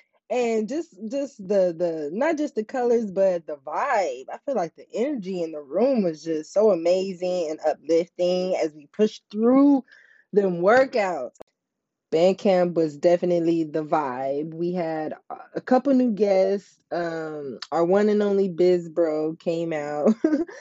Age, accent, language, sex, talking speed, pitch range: 20-39, American, English, female, 150 wpm, 180-230 Hz